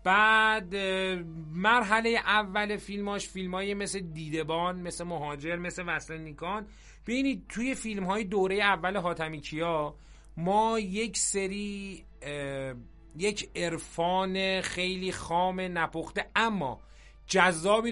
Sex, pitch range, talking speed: male, 160-205 Hz, 105 wpm